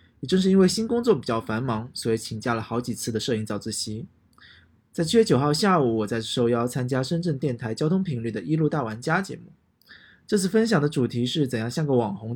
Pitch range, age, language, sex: 115-160 Hz, 20-39, Chinese, male